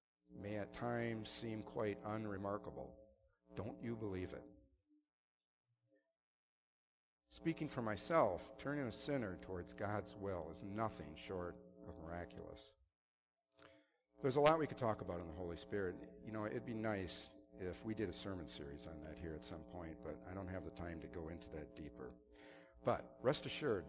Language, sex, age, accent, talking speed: English, male, 50-69, American, 165 wpm